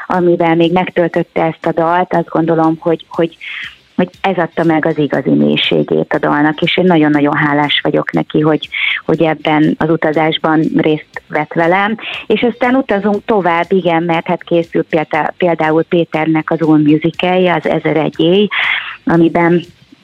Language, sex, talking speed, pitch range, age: Hungarian, female, 150 wpm, 160-185 Hz, 30-49